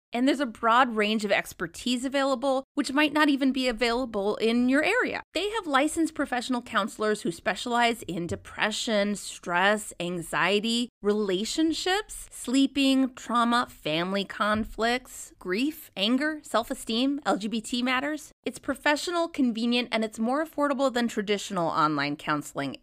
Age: 20-39